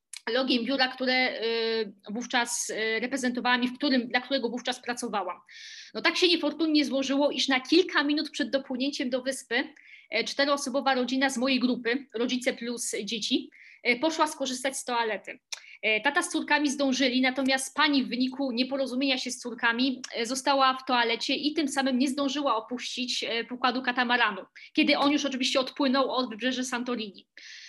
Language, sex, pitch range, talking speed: Polish, female, 245-285 Hz, 145 wpm